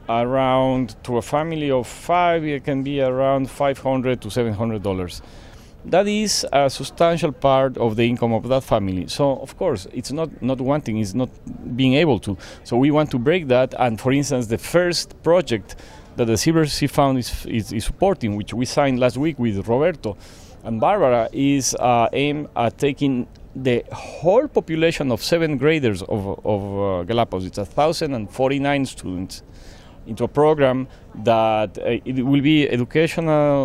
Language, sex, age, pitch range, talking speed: English, male, 40-59, 115-150 Hz, 165 wpm